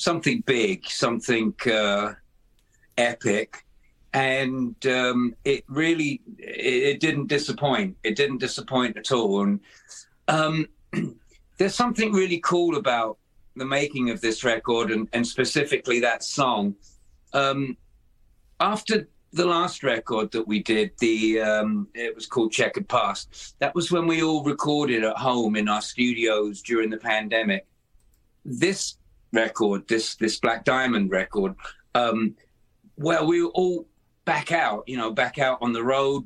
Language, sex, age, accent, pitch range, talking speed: English, male, 50-69, British, 115-155 Hz, 140 wpm